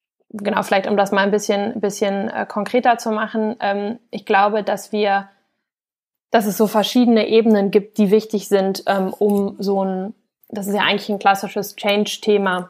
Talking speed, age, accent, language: 160 wpm, 20-39, German, German